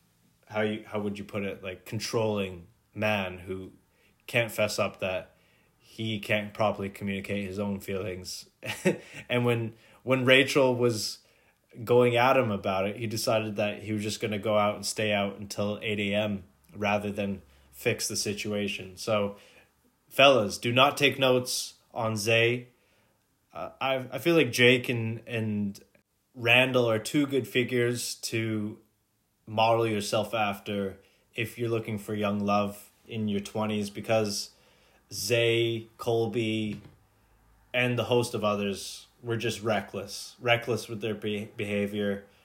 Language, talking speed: English, 145 wpm